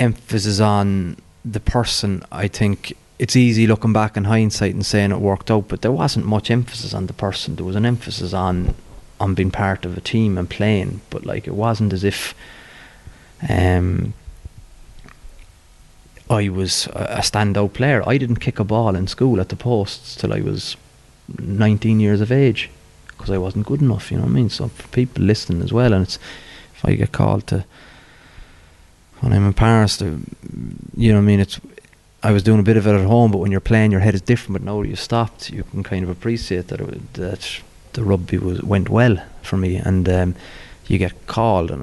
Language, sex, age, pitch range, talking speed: English, male, 30-49, 95-115 Hz, 200 wpm